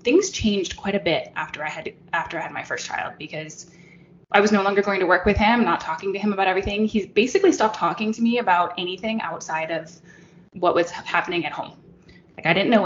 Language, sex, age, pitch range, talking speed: English, female, 10-29, 180-220 Hz, 230 wpm